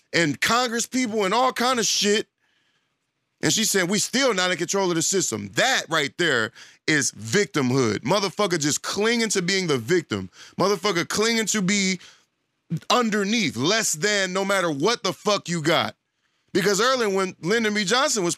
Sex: male